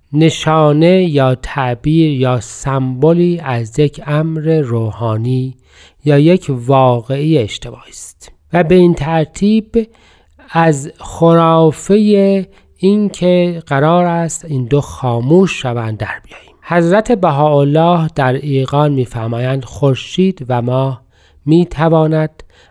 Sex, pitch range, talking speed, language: male, 125-165 Hz, 100 wpm, Persian